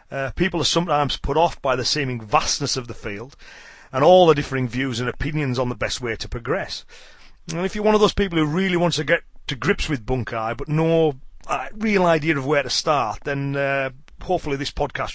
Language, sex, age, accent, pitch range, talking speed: English, male, 30-49, British, 130-170 Hz, 220 wpm